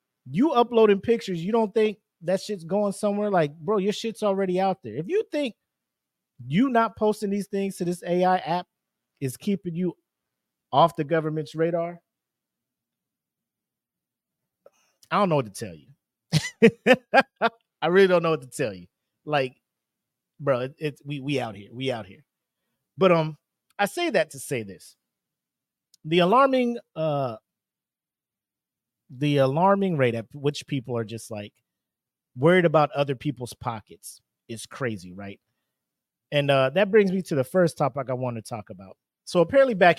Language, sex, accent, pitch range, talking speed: English, male, American, 125-190 Hz, 160 wpm